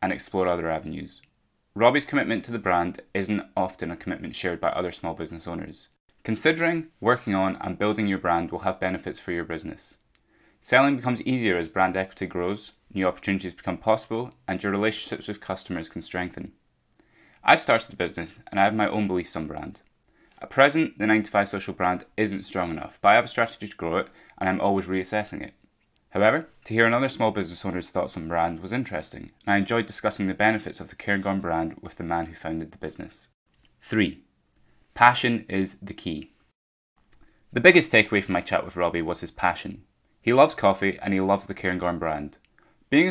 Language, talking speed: English, 195 wpm